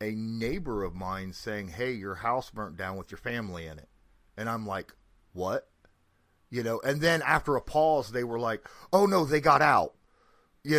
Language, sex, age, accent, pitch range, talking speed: English, male, 30-49, American, 95-115 Hz, 195 wpm